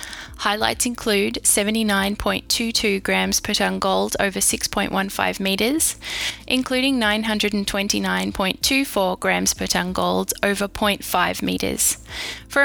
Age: 10-29